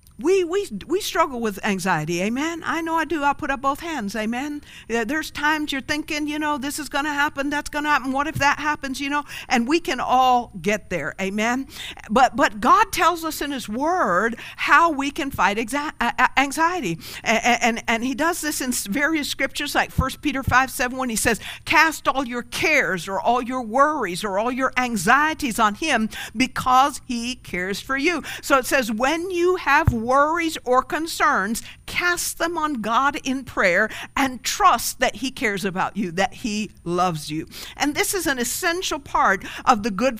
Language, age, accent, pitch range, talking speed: English, 50-69, American, 225-310 Hz, 190 wpm